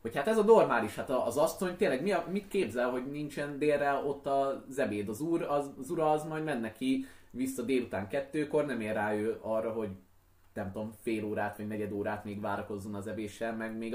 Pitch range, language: 105-135 Hz, Hungarian